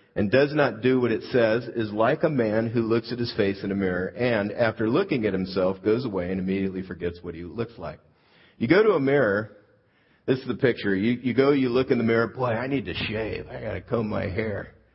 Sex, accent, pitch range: male, American, 95-140 Hz